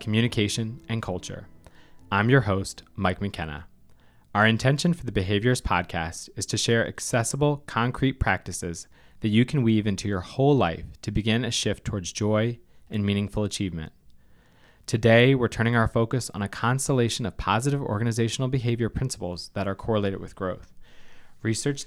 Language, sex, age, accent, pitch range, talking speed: English, male, 20-39, American, 95-120 Hz, 155 wpm